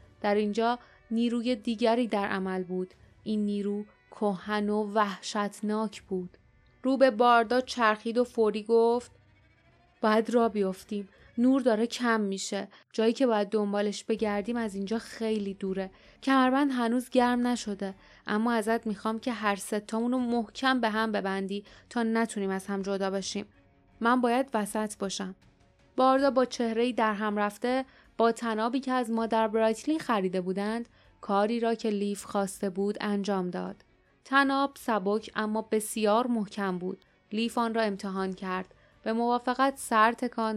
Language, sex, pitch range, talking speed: Persian, female, 200-235 Hz, 145 wpm